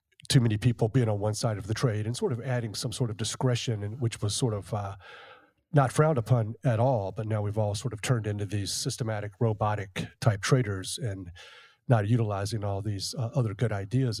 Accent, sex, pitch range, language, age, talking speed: American, male, 105-130 Hz, English, 40-59, 215 wpm